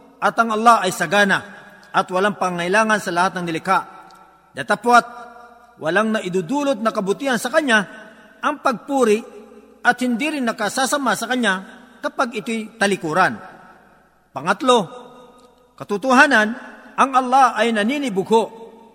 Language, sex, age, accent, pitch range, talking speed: Filipino, male, 50-69, native, 205-250 Hz, 115 wpm